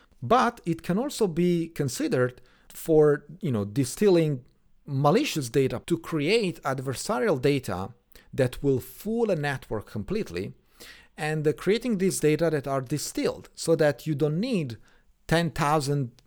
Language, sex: English, male